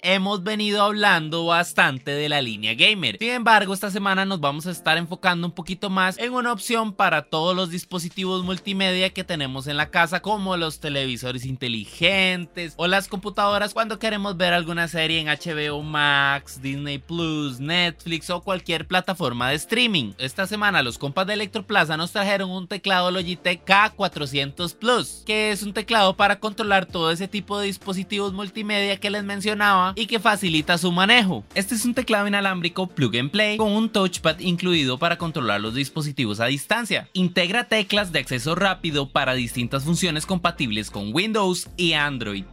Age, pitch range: 20-39, 155-205 Hz